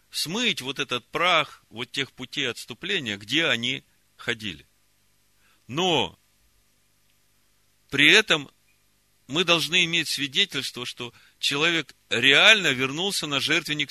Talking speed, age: 105 wpm, 40-59